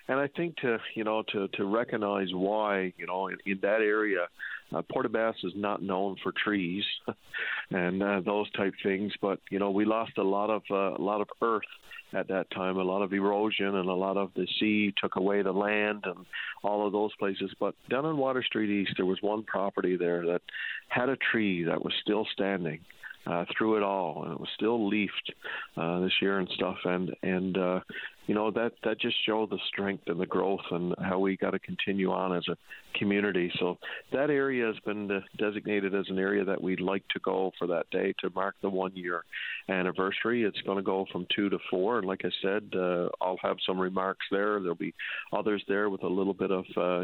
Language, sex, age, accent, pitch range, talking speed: English, male, 50-69, American, 95-105 Hz, 220 wpm